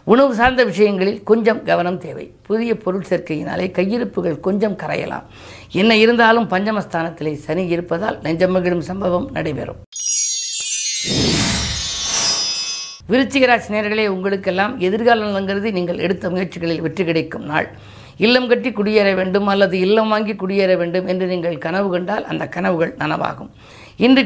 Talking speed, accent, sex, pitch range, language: 115 wpm, native, female, 170-215 Hz, Tamil